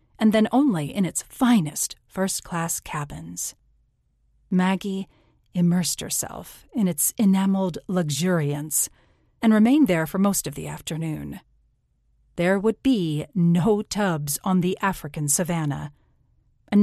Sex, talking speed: female, 120 wpm